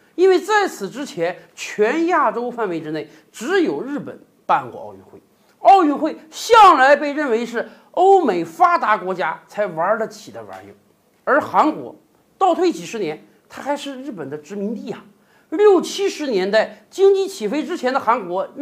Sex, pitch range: male, 220-345 Hz